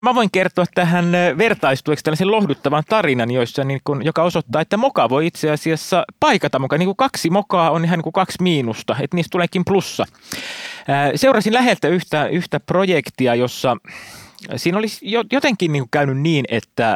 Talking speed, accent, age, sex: 160 wpm, native, 30-49, male